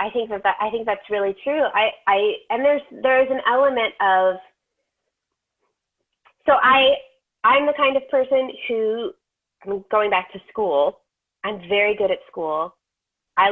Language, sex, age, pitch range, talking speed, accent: English, female, 30-49, 180-265 Hz, 160 wpm, American